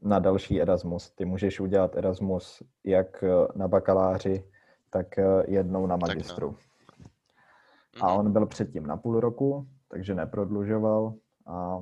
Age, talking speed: 20-39, 120 wpm